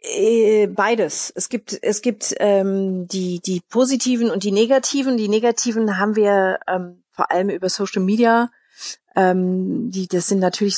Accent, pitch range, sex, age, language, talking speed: German, 185-215 Hz, female, 30-49, German, 150 wpm